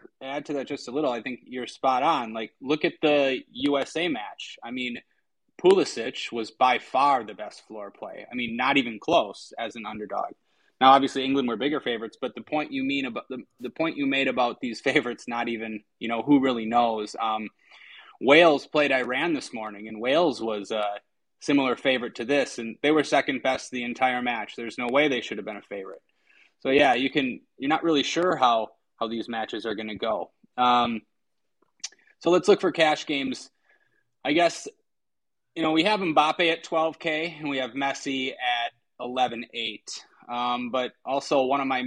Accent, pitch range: American, 120-150 Hz